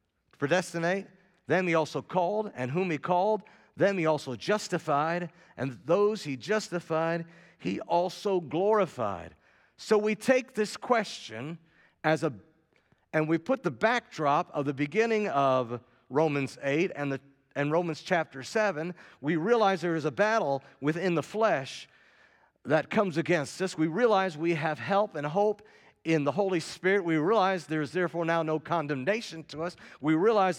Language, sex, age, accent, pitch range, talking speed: English, male, 50-69, American, 145-195 Hz, 155 wpm